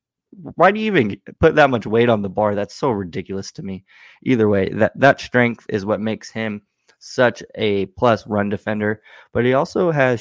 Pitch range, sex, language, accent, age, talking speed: 105-120 Hz, male, English, American, 20-39, 200 wpm